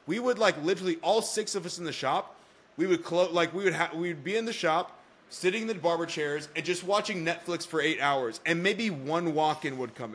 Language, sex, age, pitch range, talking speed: English, male, 20-39, 150-190 Hz, 240 wpm